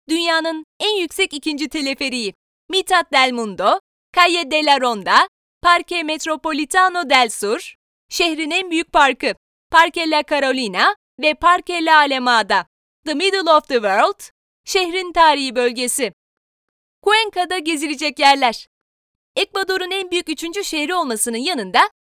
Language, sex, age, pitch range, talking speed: Turkish, female, 30-49, 275-365 Hz, 120 wpm